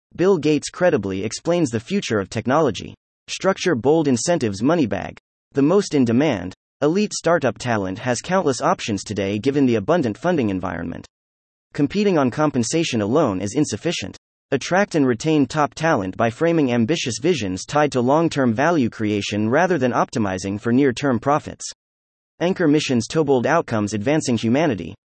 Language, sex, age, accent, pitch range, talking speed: English, male, 30-49, American, 110-165 Hz, 150 wpm